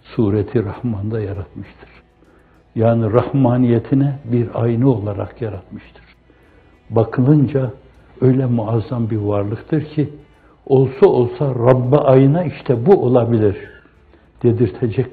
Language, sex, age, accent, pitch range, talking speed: Turkish, male, 60-79, native, 105-130 Hz, 90 wpm